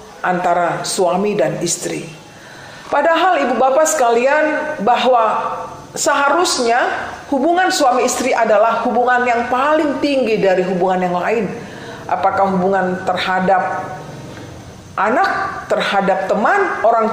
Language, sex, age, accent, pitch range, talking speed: Indonesian, female, 40-59, native, 180-270 Hz, 100 wpm